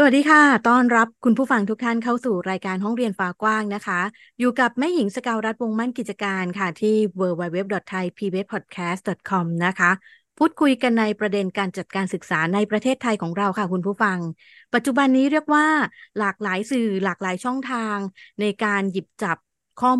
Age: 20-39